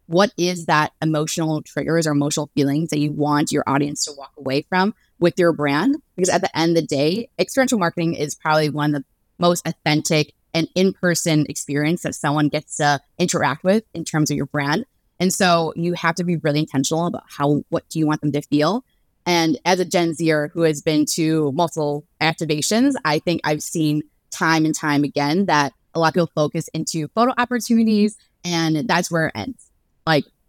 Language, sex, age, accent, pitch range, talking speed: English, female, 20-39, American, 150-175 Hz, 200 wpm